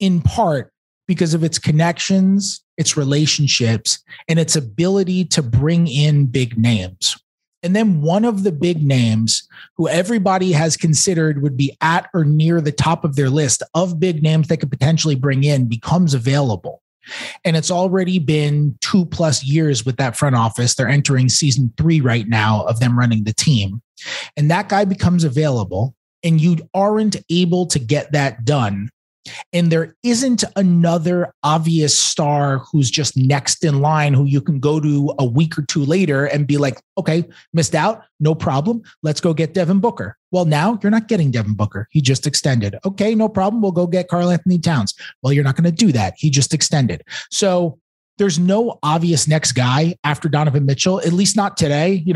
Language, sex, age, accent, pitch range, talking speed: English, male, 30-49, American, 135-175 Hz, 185 wpm